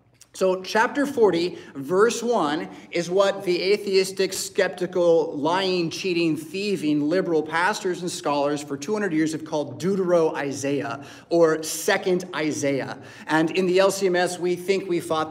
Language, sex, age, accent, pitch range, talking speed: English, male, 30-49, American, 155-205 Hz, 135 wpm